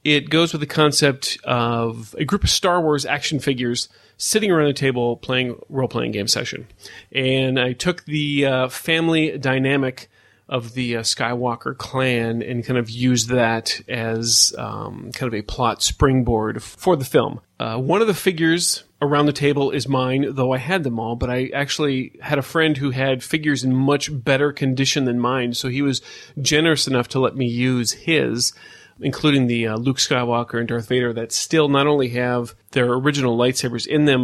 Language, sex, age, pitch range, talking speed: English, male, 30-49, 120-145 Hz, 185 wpm